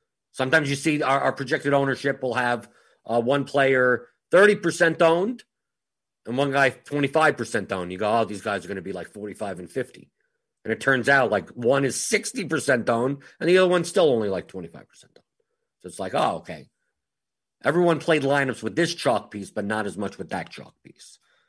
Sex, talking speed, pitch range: male, 195 wpm, 105-155 Hz